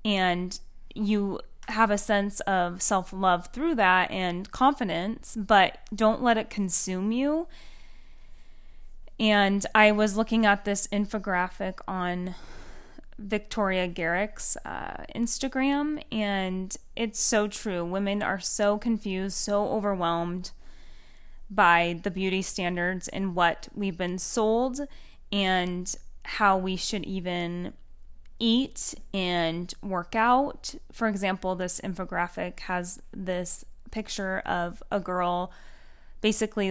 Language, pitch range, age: English, 180-220 Hz, 10-29